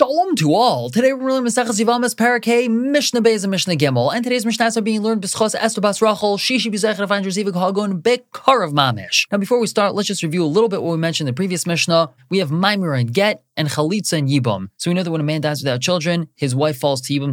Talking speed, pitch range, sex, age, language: 240 wpm, 135-190 Hz, male, 20-39, English